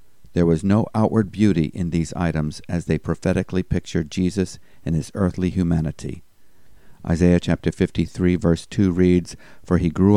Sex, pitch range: male, 85-100 Hz